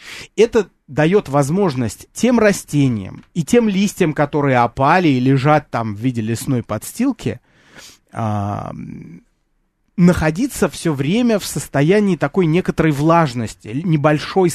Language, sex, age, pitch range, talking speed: Russian, male, 30-49, 130-185 Hz, 105 wpm